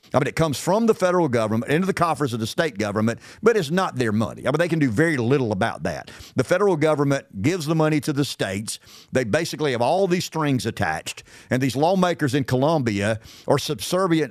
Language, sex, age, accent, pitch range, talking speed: English, male, 50-69, American, 120-175 Hz, 220 wpm